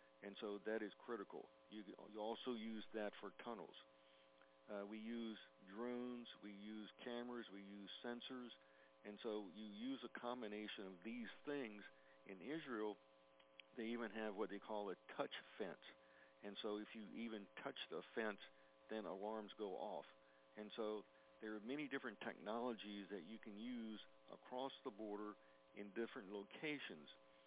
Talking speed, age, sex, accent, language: 155 wpm, 50-69, male, American, English